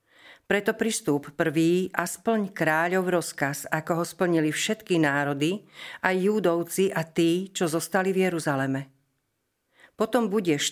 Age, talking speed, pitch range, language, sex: 50-69, 125 wpm, 155-185 Hz, Slovak, female